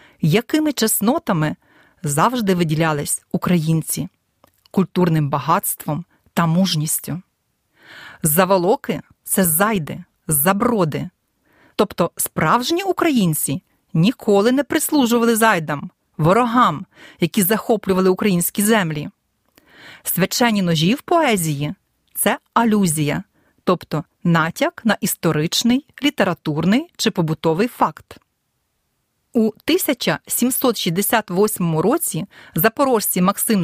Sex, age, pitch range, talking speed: female, 40-59, 165-230 Hz, 80 wpm